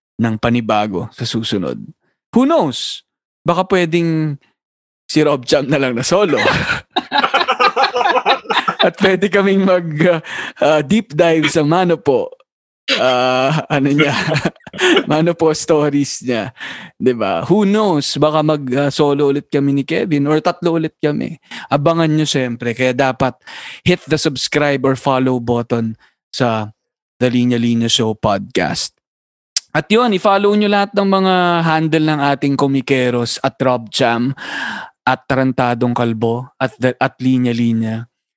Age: 20-39